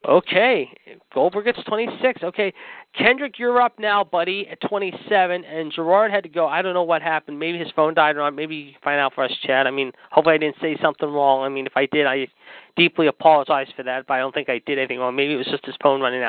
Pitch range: 155-200 Hz